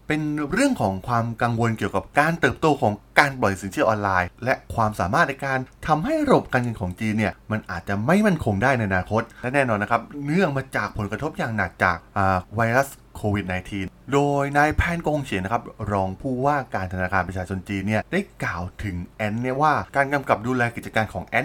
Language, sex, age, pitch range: Thai, male, 20-39, 100-140 Hz